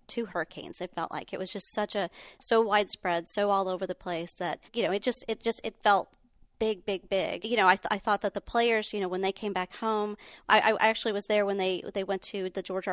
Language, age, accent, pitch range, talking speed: English, 30-49, American, 180-210 Hz, 265 wpm